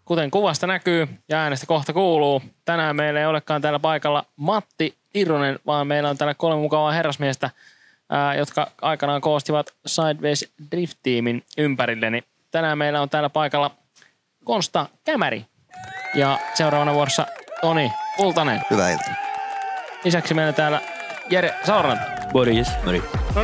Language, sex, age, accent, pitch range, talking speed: Finnish, male, 20-39, native, 125-160 Hz, 130 wpm